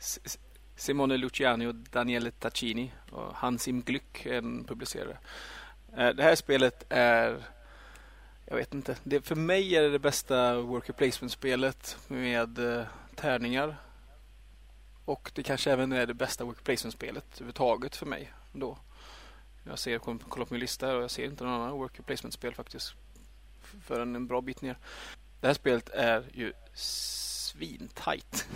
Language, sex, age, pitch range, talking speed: Swedish, male, 30-49, 115-130 Hz, 140 wpm